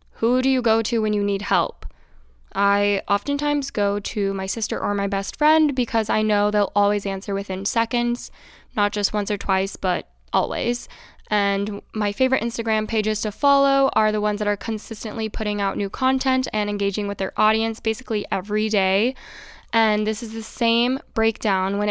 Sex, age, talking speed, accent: female, 10-29, 180 wpm, American